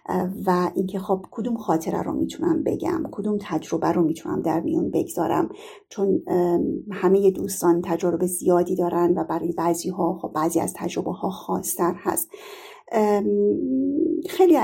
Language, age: Persian, 40-59